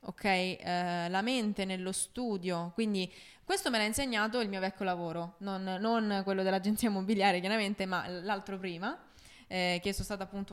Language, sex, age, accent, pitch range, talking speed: Italian, female, 20-39, native, 185-225 Hz, 160 wpm